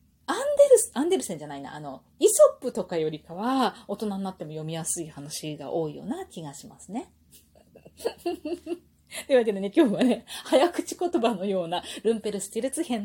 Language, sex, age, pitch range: Japanese, female, 30-49, 175-280 Hz